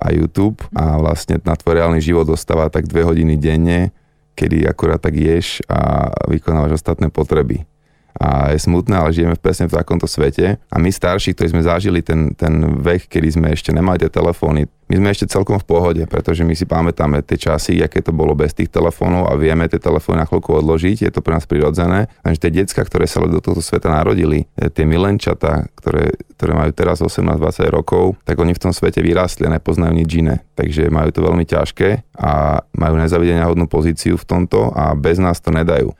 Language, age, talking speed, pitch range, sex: Slovak, 30-49, 195 wpm, 80-85 Hz, male